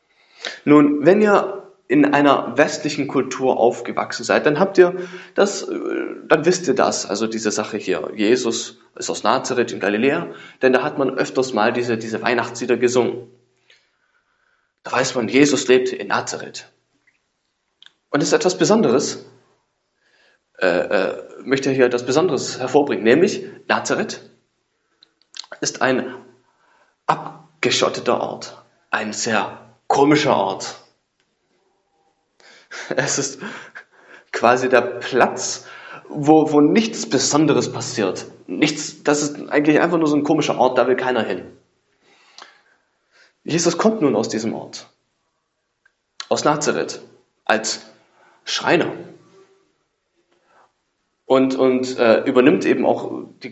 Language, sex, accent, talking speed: English, male, German, 120 wpm